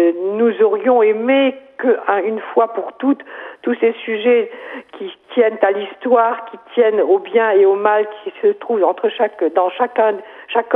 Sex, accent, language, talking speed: female, French, French, 165 wpm